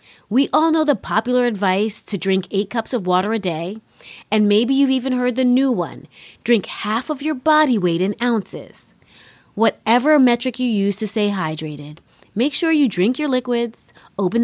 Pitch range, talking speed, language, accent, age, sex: 185-245 Hz, 185 wpm, English, American, 30-49, female